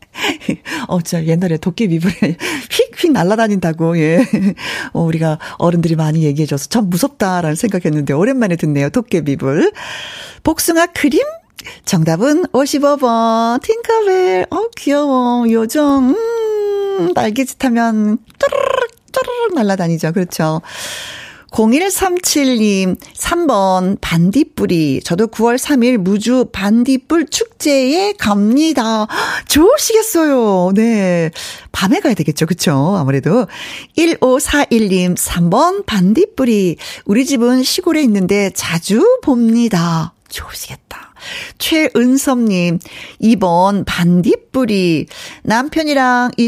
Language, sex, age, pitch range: Korean, female, 40-59, 180-270 Hz